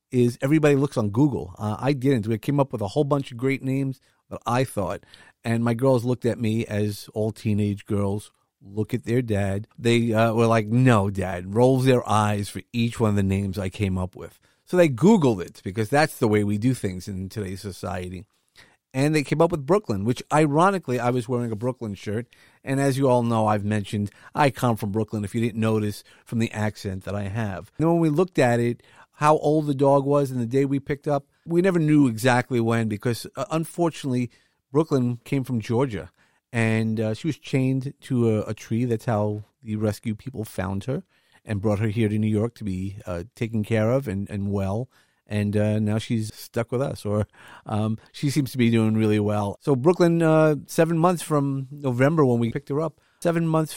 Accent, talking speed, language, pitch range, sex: American, 215 wpm, English, 105-140 Hz, male